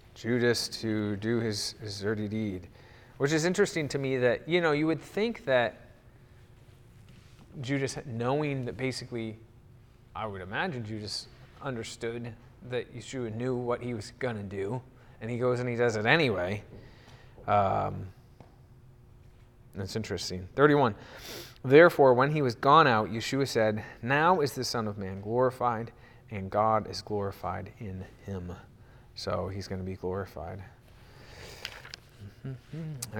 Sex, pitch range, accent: male, 105-130 Hz, American